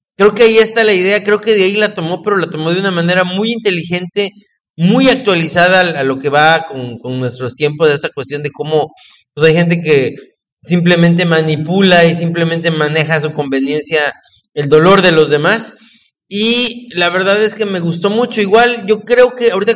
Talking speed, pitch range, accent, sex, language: 195 wpm, 170-235 Hz, Mexican, male, English